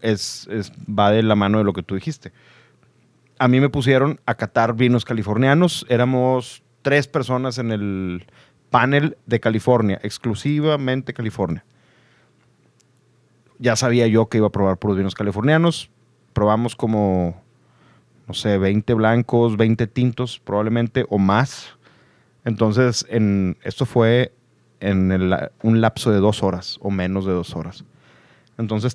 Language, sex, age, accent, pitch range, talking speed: Spanish, male, 30-49, Mexican, 105-130 Hz, 140 wpm